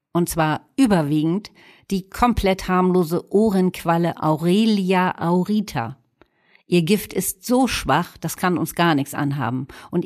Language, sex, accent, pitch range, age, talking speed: German, female, German, 150-205 Hz, 50-69, 125 wpm